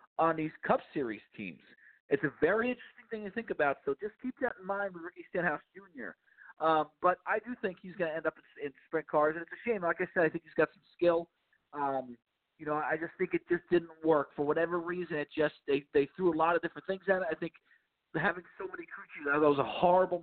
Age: 40-59